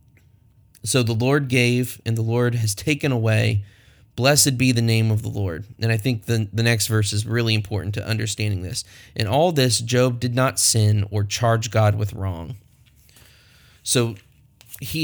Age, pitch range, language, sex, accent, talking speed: 30-49, 110-125 Hz, English, male, American, 175 wpm